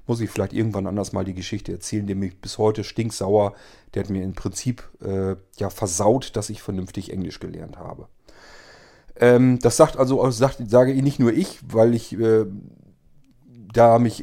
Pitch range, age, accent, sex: 95-120 Hz, 40-59, German, male